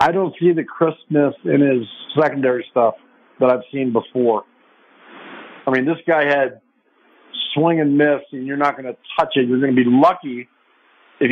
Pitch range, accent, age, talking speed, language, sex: 140-170 Hz, American, 50-69, 180 wpm, English, male